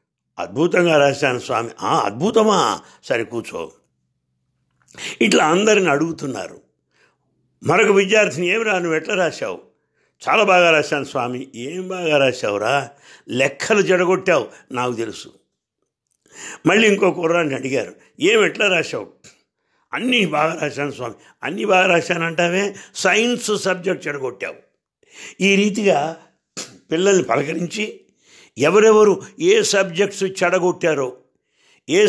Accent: Indian